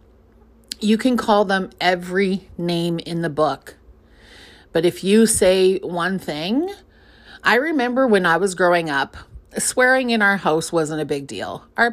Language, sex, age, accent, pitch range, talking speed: English, female, 30-49, American, 155-210 Hz, 155 wpm